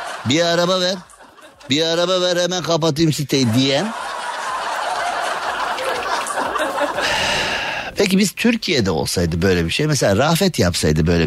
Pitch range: 115-180 Hz